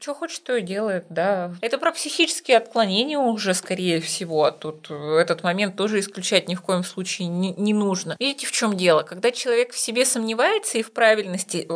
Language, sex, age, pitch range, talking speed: Russian, female, 20-39, 190-235 Hz, 190 wpm